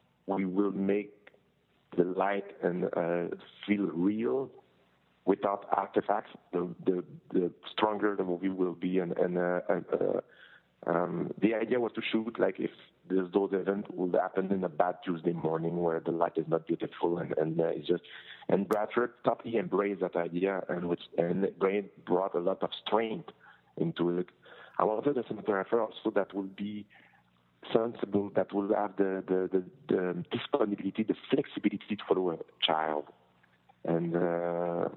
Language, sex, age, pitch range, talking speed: English, male, 50-69, 90-100 Hz, 160 wpm